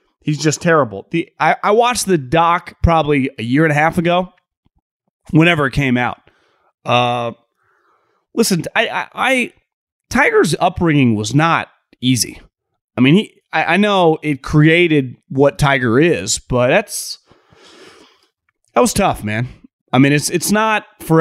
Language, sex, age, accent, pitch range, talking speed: English, male, 30-49, American, 125-180 Hz, 150 wpm